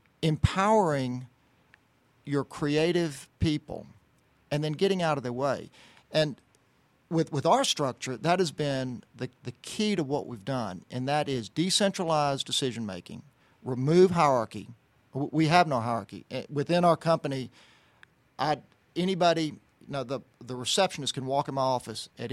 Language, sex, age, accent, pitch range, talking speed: English, male, 50-69, American, 125-155 Hz, 140 wpm